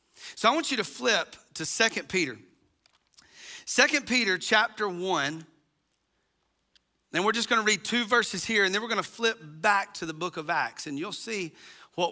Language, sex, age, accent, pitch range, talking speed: English, male, 40-59, American, 160-215 Hz, 180 wpm